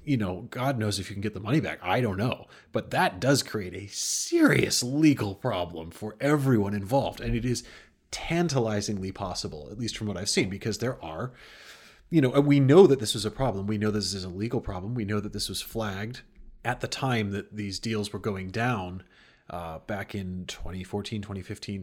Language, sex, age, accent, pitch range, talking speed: English, male, 30-49, American, 100-120 Hz, 210 wpm